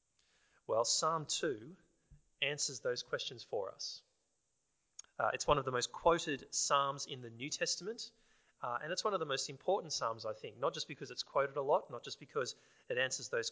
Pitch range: 120-170 Hz